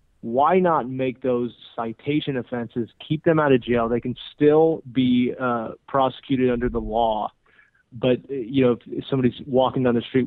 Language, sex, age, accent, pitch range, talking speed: English, male, 30-49, American, 120-135 Hz, 175 wpm